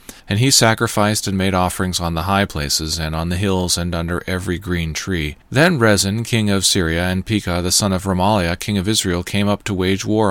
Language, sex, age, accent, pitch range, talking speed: English, male, 40-59, American, 90-115 Hz, 220 wpm